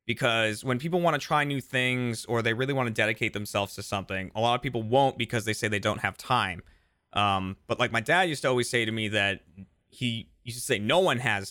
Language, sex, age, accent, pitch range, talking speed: English, male, 30-49, American, 100-125 Hz, 255 wpm